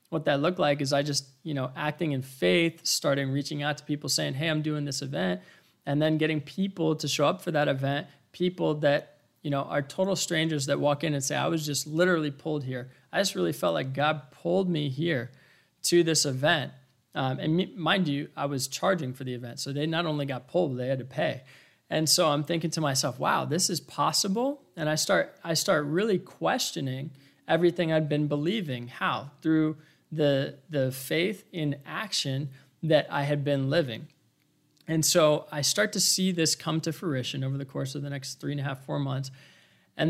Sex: male